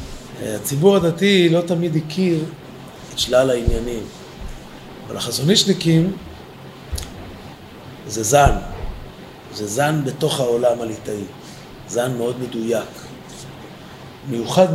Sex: male